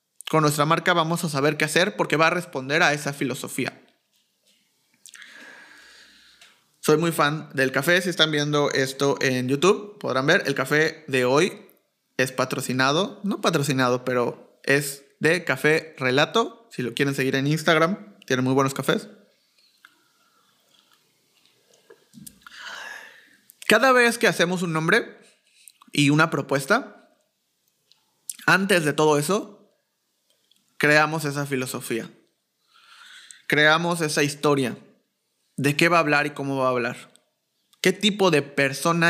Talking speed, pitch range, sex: 130 wpm, 145-180 Hz, male